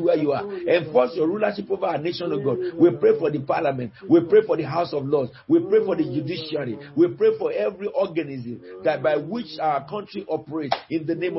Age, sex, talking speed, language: 50-69, male, 225 wpm, English